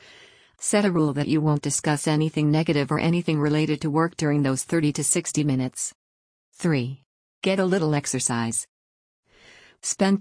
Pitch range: 140-160 Hz